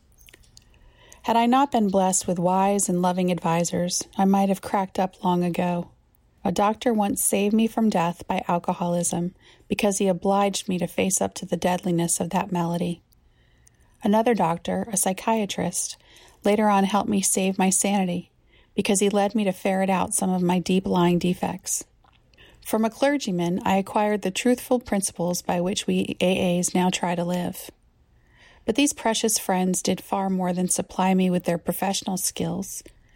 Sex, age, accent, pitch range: female, 30-49, American, 175-200 Hz